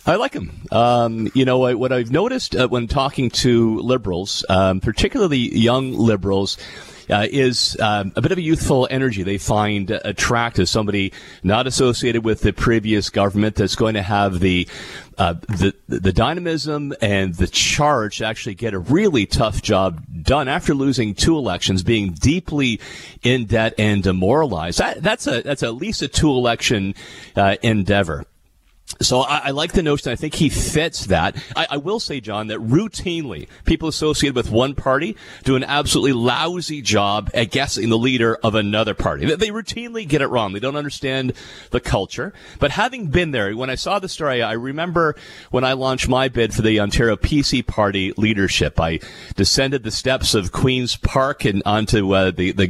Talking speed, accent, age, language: 180 wpm, American, 40-59, English